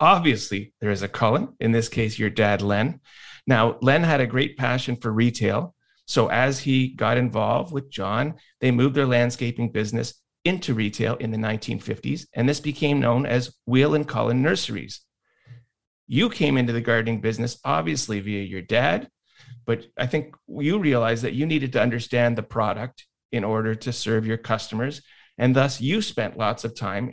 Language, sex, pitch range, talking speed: English, male, 115-140 Hz, 175 wpm